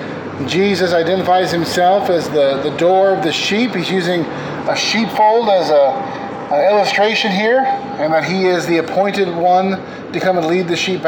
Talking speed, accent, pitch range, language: 170 wpm, American, 160-195 Hz, English